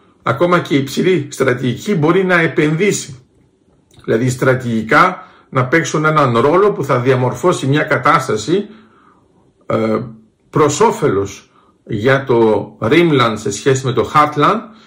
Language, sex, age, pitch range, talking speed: Greek, male, 50-69, 130-165 Hz, 115 wpm